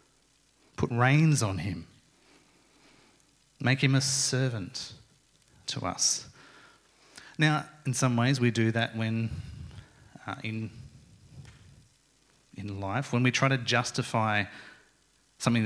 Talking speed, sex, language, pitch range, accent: 105 wpm, male, English, 110-135 Hz, Australian